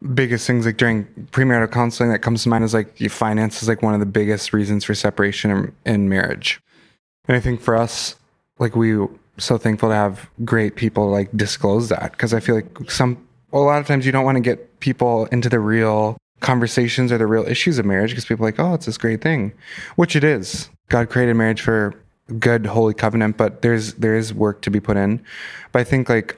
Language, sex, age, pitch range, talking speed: English, male, 20-39, 105-120 Hz, 220 wpm